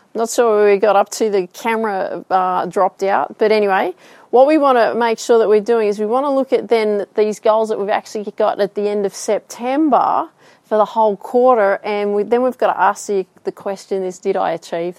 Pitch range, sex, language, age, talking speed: 190-240 Hz, female, English, 30-49, 235 wpm